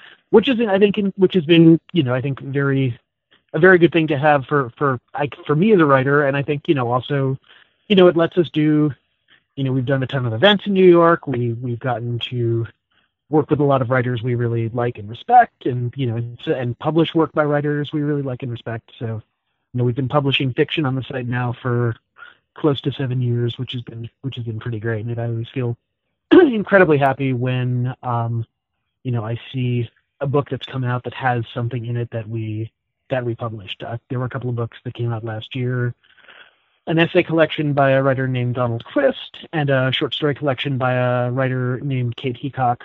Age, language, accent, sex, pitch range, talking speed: 30-49, English, American, male, 120-150 Hz, 225 wpm